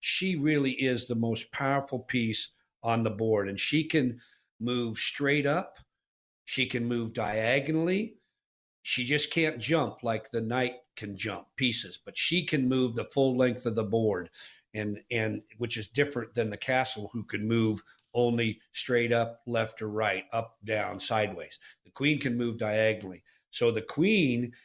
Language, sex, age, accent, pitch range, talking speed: English, male, 50-69, American, 115-140 Hz, 165 wpm